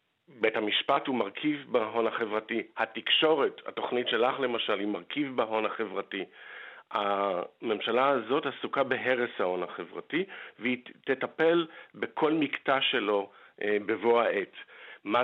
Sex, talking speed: male, 110 wpm